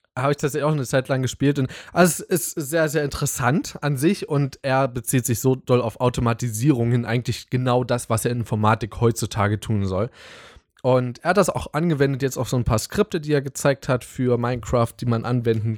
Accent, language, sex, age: German, German, male, 20-39